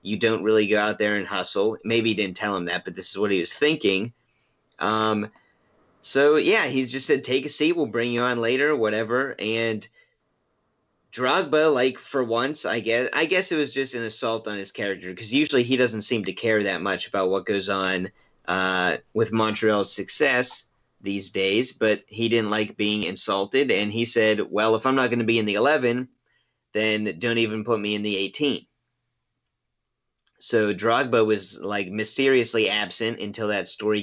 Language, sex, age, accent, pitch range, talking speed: English, male, 30-49, American, 100-120 Hz, 190 wpm